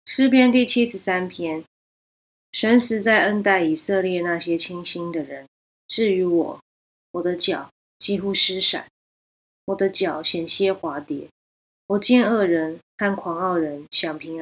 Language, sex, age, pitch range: Chinese, female, 20-39, 165-210 Hz